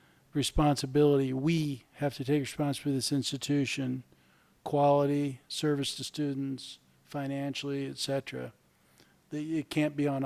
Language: English